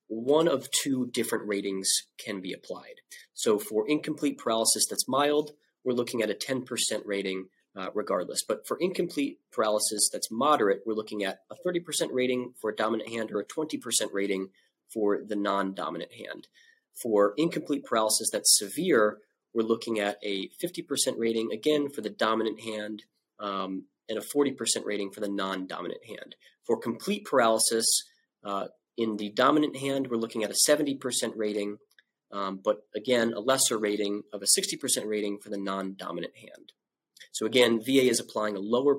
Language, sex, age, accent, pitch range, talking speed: English, male, 30-49, American, 105-135 Hz, 160 wpm